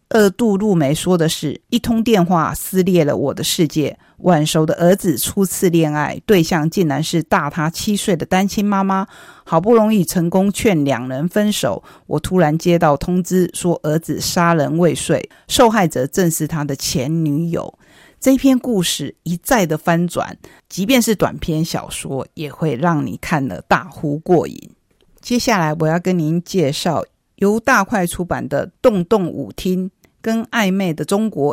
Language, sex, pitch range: Chinese, female, 155-195 Hz